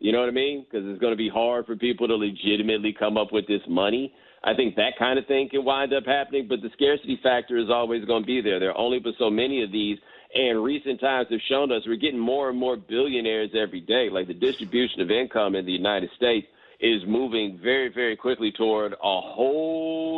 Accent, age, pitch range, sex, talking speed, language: American, 50-69, 105-130 Hz, male, 235 wpm, English